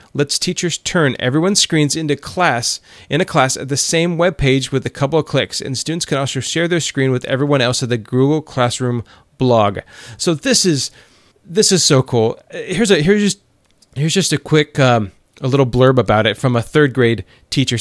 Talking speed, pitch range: 205 wpm, 120-155 Hz